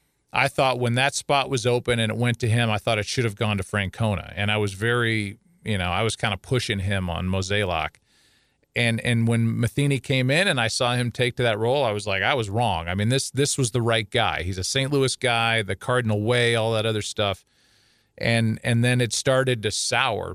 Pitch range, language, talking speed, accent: 110-125 Hz, English, 240 wpm, American